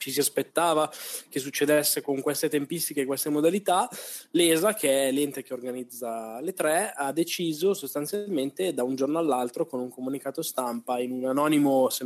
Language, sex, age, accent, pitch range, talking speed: Italian, male, 20-39, native, 135-165 Hz, 170 wpm